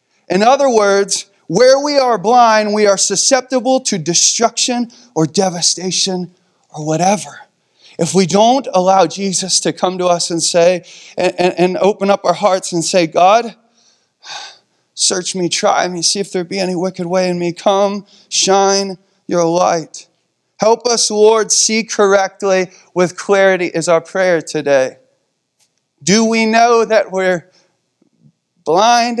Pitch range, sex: 170-220 Hz, male